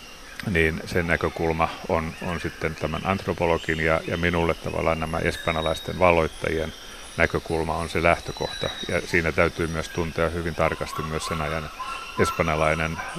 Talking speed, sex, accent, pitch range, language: 135 wpm, male, native, 80-90 Hz, Finnish